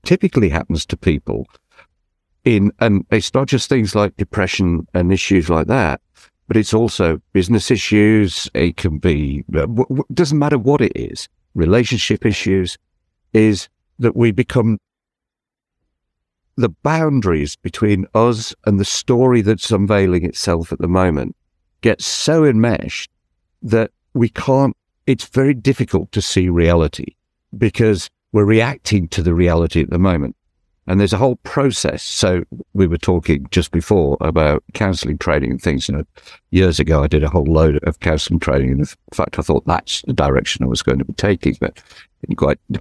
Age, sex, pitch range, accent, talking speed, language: 60-79, male, 85-115 Hz, British, 160 wpm, English